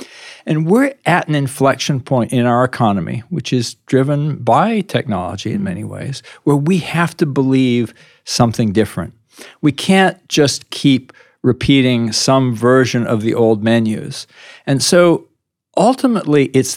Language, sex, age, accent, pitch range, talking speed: English, male, 50-69, American, 115-140 Hz, 140 wpm